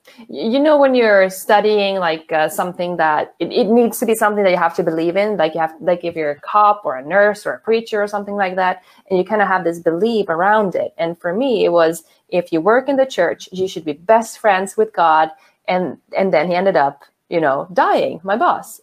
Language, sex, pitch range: English, female, 180-225 Hz